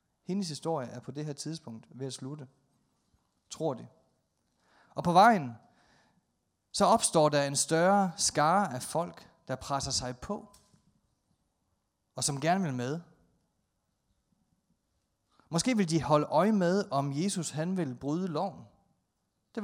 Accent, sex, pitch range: native, male, 130-185 Hz